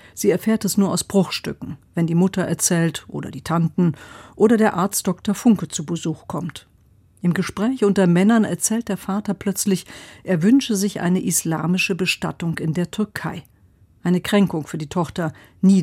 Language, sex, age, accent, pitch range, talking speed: German, female, 50-69, German, 165-200 Hz, 165 wpm